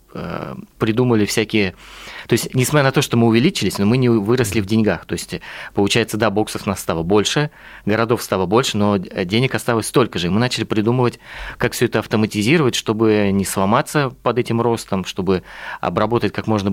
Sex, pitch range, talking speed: male, 100-115 Hz, 185 wpm